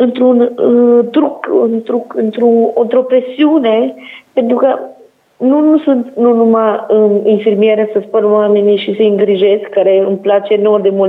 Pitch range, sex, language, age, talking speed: 220-280 Hz, female, Romanian, 30-49, 155 wpm